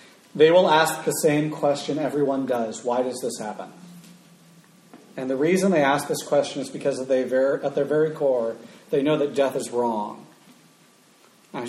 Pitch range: 125-160 Hz